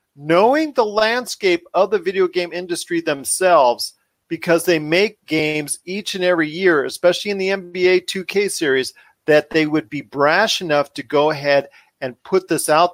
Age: 40-59